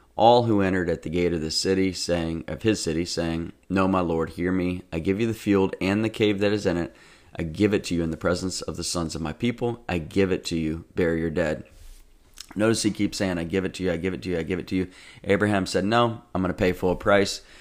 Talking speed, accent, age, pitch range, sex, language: 275 wpm, American, 30-49, 85-95 Hz, male, English